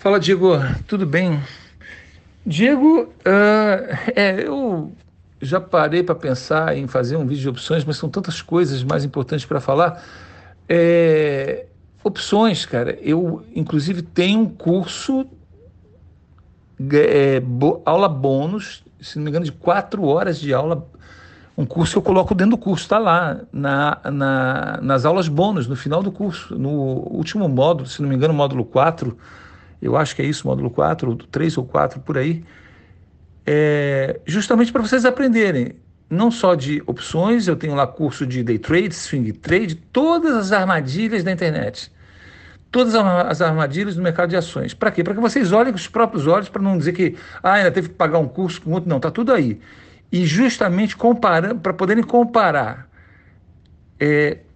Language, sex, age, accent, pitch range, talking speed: Portuguese, male, 60-79, Brazilian, 130-190 Hz, 155 wpm